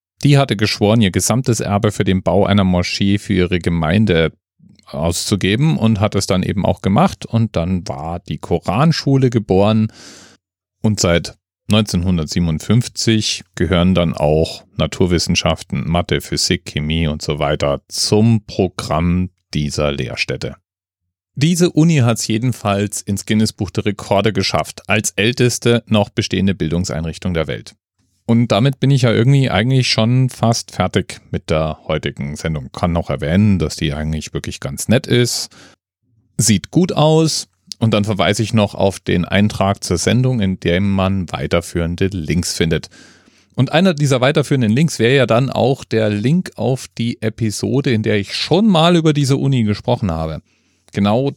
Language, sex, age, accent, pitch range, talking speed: German, male, 40-59, German, 90-120 Hz, 155 wpm